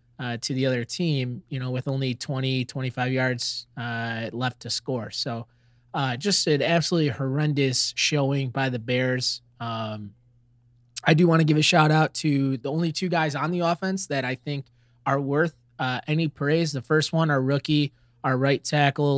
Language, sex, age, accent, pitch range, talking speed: English, male, 20-39, American, 120-140 Hz, 185 wpm